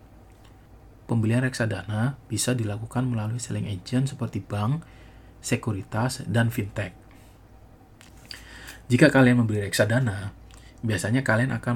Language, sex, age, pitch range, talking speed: Indonesian, male, 30-49, 105-120 Hz, 95 wpm